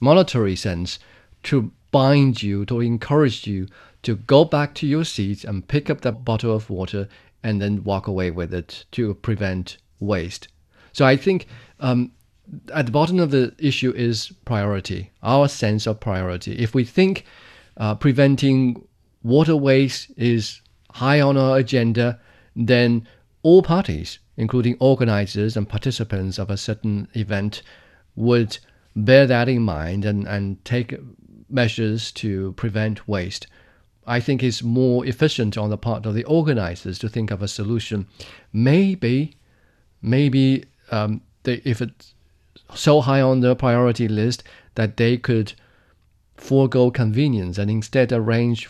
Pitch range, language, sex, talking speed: 100-130 Hz, English, male, 145 wpm